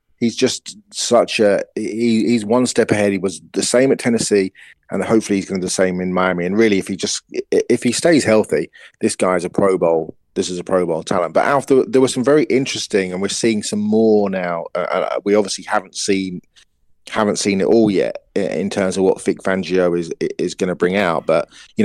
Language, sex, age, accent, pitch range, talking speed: English, male, 30-49, British, 95-115 Hz, 230 wpm